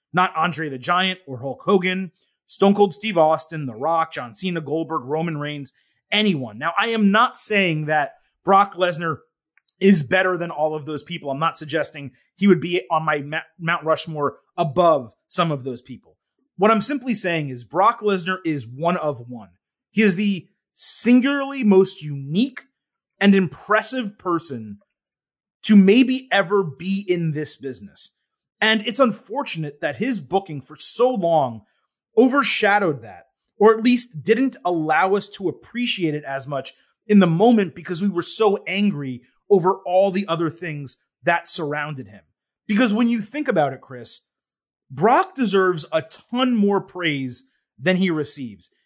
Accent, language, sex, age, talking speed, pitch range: American, English, male, 30-49, 160 wpm, 155-210 Hz